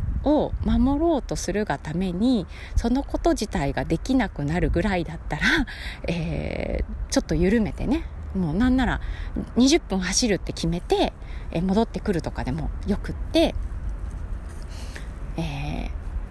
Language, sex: Japanese, female